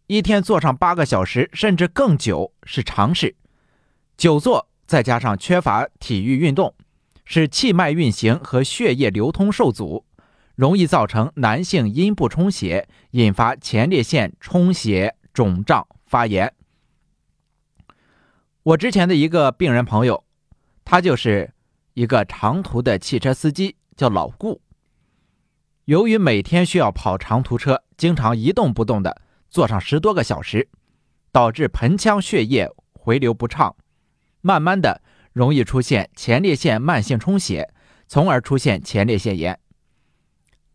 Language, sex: Chinese, male